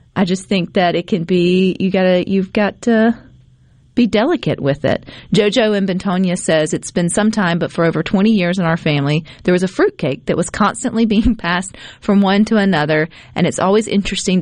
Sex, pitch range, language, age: female, 160-200 Hz, English, 40-59